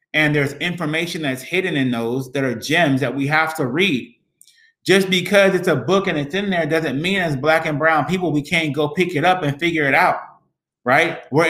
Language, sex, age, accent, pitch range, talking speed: English, male, 30-49, American, 130-165 Hz, 225 wpm